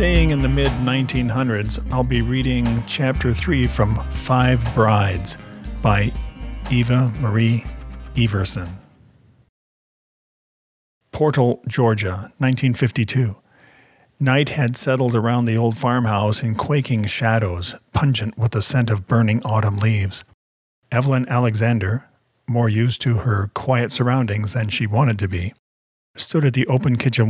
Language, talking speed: English, 120 wpm